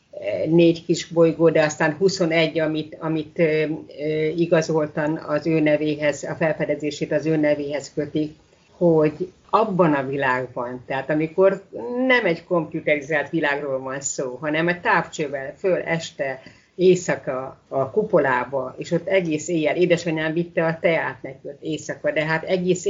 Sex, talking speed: female, 135 wpm